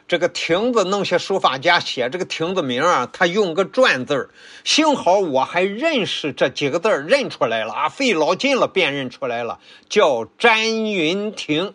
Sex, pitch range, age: male, 150-220 Hz, 50-69